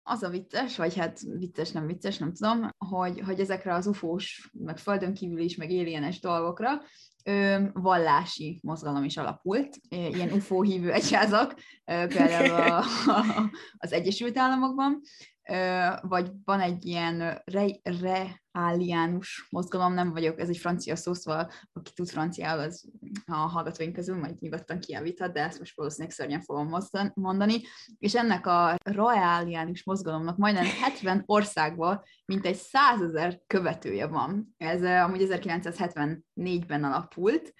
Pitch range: 170-205 Hz